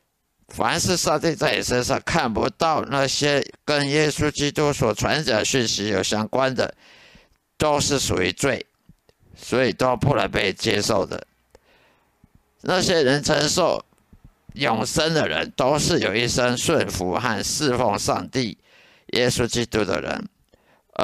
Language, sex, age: Chinese, male, 50-69